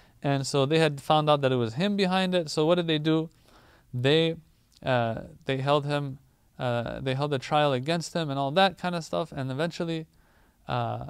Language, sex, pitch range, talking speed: English, male, 125-155 Hz, 205 wpm